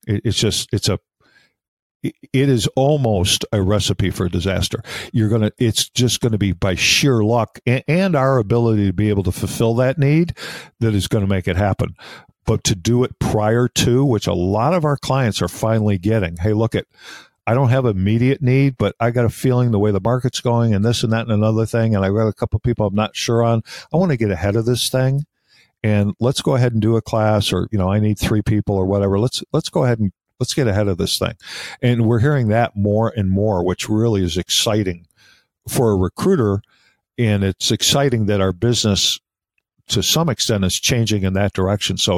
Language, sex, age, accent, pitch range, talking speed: English, male, 50-69, American, 100-130 Hz, 220 wpm